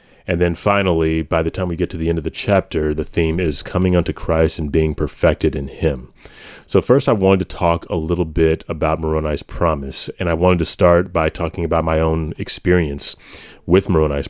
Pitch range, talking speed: 80-90 Hz, 210 wpm